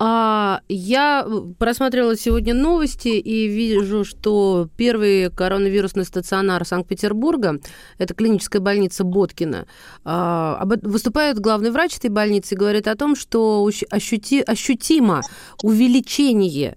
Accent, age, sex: native, 30-49, female